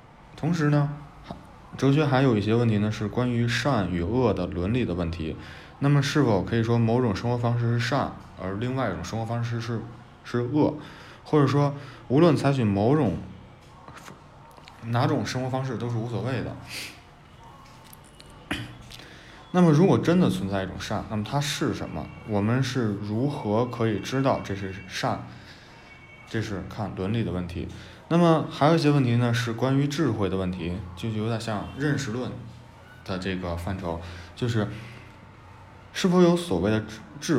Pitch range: 100-135 Hz